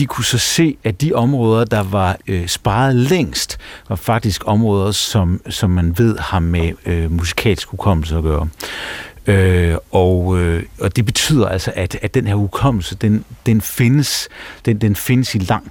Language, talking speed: Danish, 175 wpm